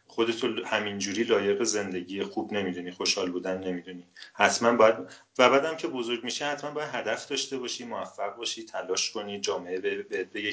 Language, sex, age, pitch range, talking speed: Persian, male, 40-59, 95-125 Hz, 170 wpm